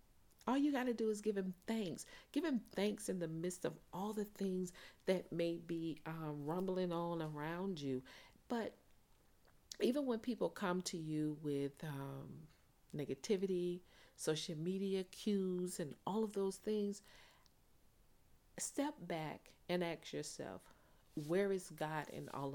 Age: 40-59